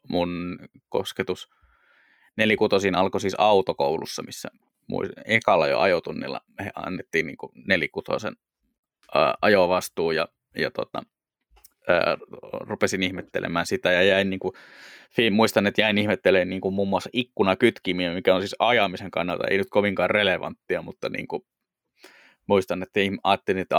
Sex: male